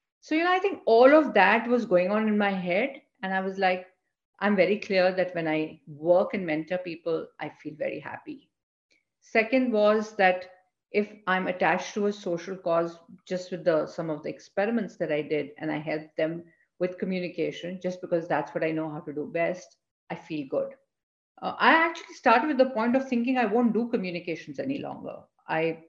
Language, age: English, 50-69